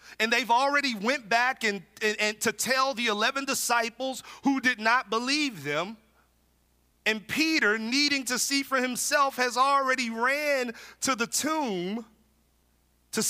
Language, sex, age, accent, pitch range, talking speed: English, male, 40-59, American, 210-265 Hz, 145 wpm